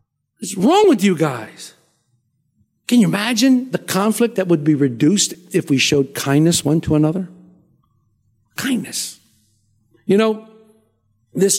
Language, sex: English, male